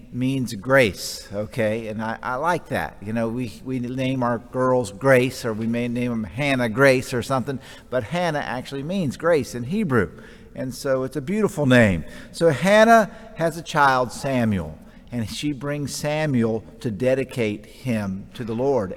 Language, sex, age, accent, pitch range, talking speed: English, male, 50-69, American, 120-165 Hz, 170 wpm